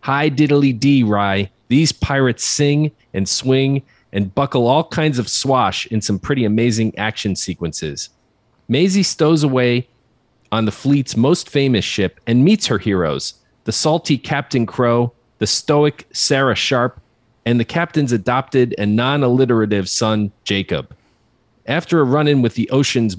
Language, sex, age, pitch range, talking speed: English, male, 40-59, 110-145 Hz, 140 wpm